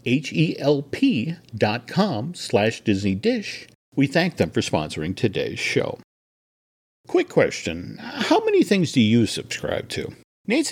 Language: English